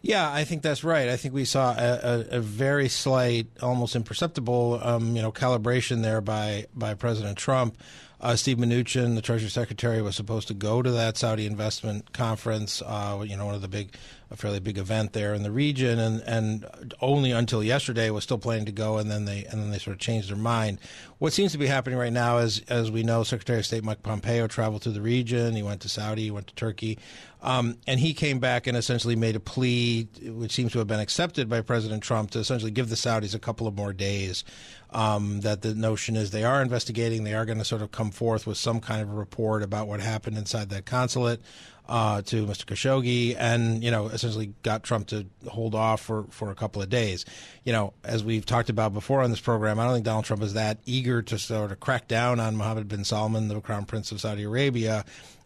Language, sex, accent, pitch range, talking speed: English, male, American, 110-120 Hz, 230 wpm